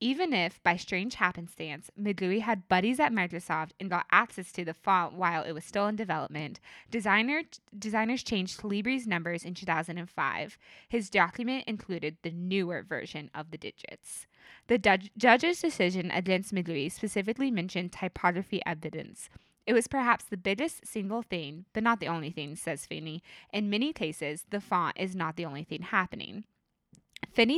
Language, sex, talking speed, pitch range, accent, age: English, female, 155 wpm, 170-220 Hz, American, 20-39